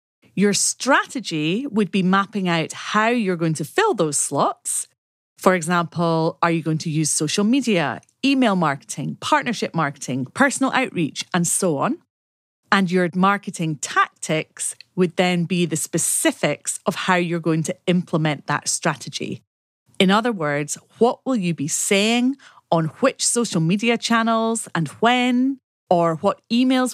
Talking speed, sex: 145 wpm, female